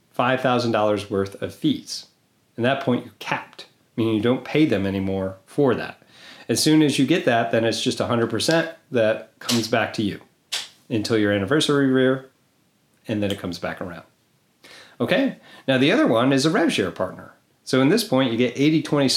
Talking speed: 180 wpm